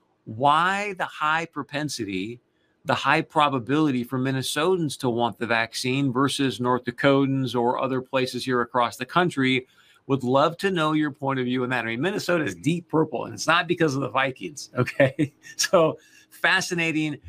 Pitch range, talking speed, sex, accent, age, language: 125-155 Hz, 170 wpm, male, American, 40-59, English